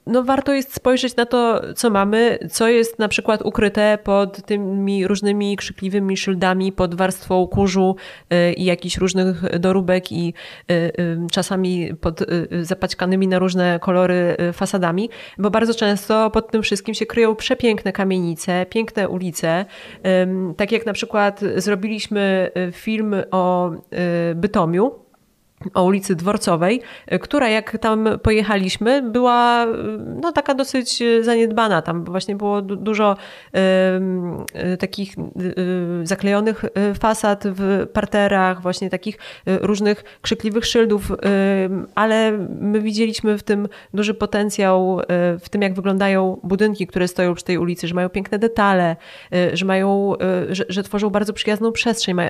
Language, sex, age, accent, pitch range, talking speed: Polish, female, 20-39, native, 185-220 Hz, 130 wpm